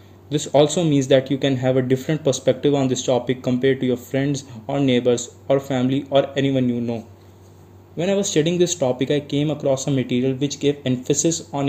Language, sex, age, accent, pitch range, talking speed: English, male, 20-39, Indian, 125-150 Hz, 205 wpm